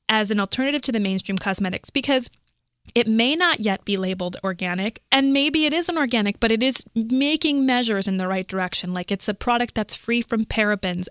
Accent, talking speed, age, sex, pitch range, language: American, 200 wpm, 20-39, female, 200-250 Hz, English